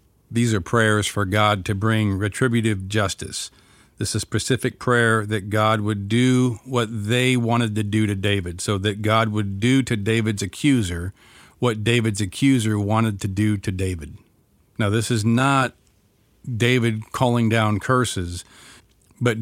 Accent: American